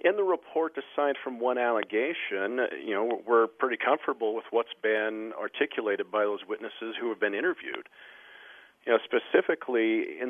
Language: English